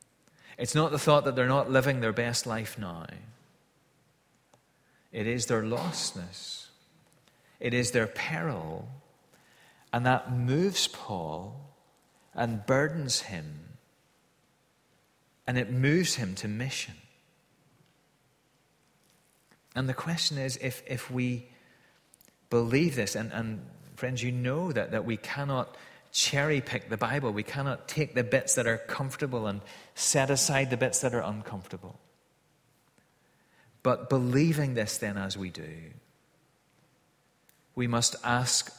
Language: English